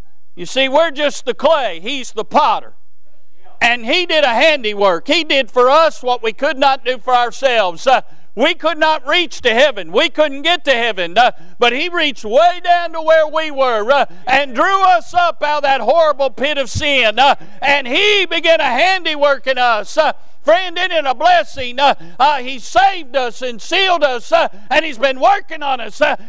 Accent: American